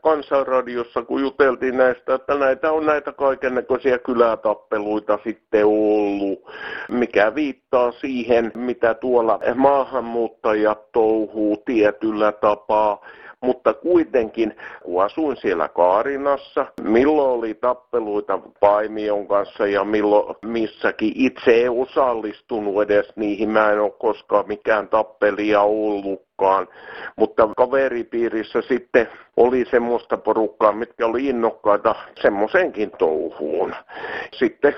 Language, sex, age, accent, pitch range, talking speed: Finnish, male, 50-69, native, 105-125 Hz, 100 wpm